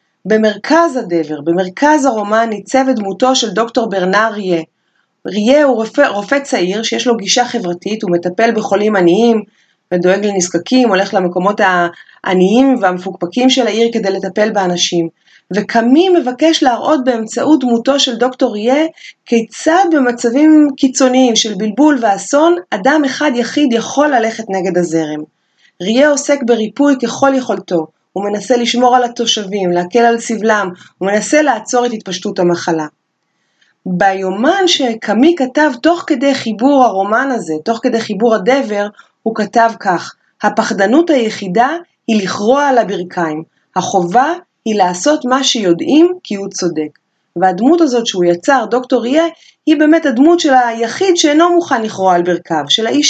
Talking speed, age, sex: 140 wpm, 30-49, female